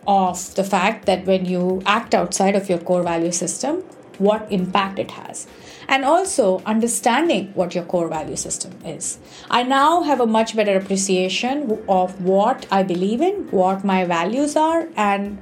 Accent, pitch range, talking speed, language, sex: Indian, 185-235 Hz, 165 wpm, English, female